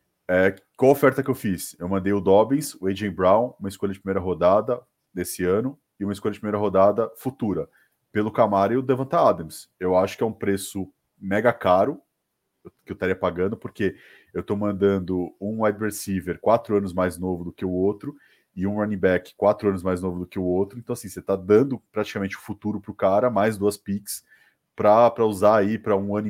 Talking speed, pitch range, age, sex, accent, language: 210 wpm, 90-115 Hz, 20-39, male, Brazilian, Portuguese